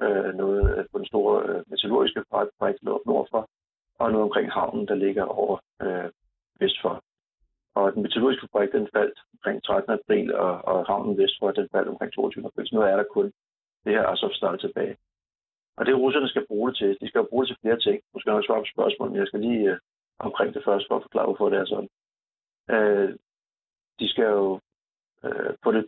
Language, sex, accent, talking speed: Danish, male, native, 205 wpm